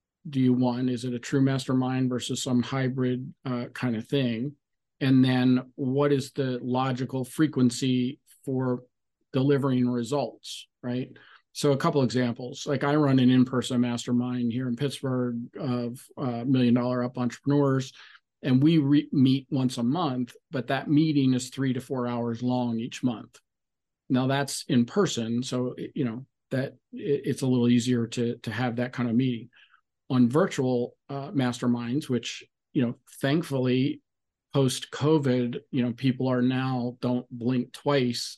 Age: 40-59